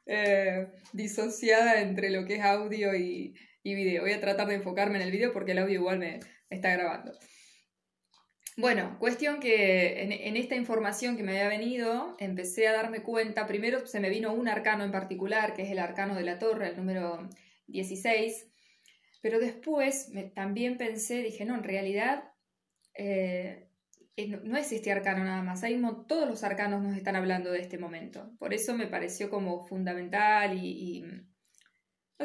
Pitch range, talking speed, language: 190-220 Hz, 170 wpm, Spanish